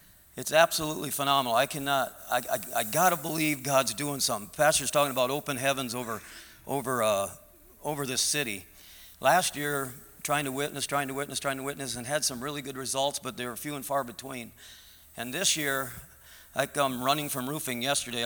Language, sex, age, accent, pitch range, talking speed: English, male, 50-69, American, 125-145 Hz, 190 wpm